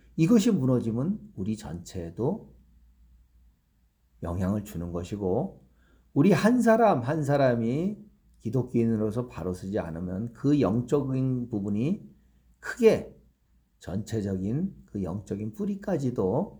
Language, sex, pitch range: Korean, male, 70-120 Hz